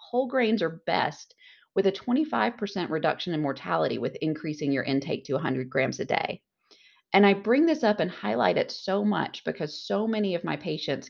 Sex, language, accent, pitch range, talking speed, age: female, English, American, 155-225 Hz, 190 wpm, 30-49